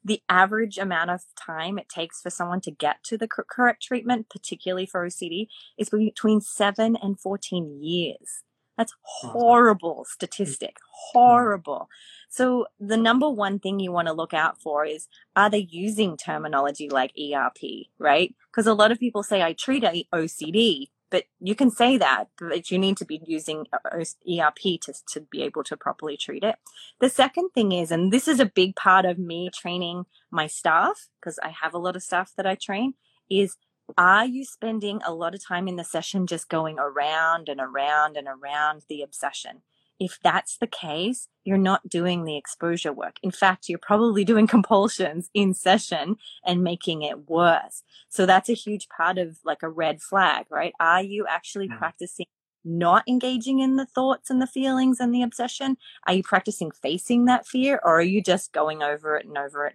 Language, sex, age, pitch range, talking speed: English, female, 20-39, 165-220 Hz, 185 wpm